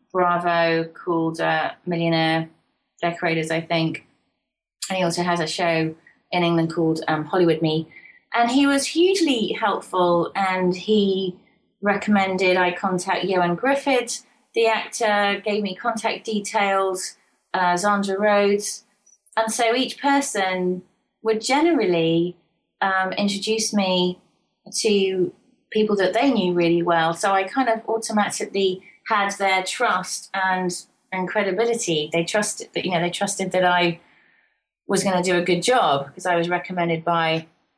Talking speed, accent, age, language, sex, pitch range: 140 wpm, British, 30-49, English, female, 170-205 Hz